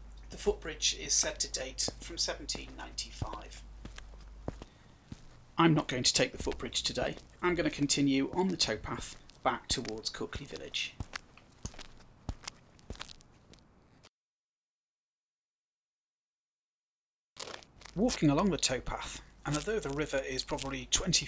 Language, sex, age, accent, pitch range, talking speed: English, male, 40-59, British, 130-165 Hz, 105 wpm